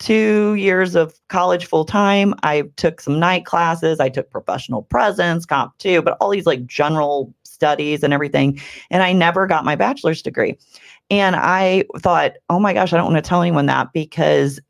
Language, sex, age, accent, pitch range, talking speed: English, female, 40-59, American, 150-190 Hz, 190 wpm